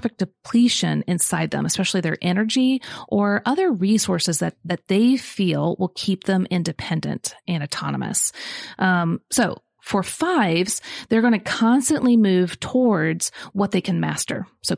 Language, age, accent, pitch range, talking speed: English, 30-49, American, 180-225 Hz, 140 wpm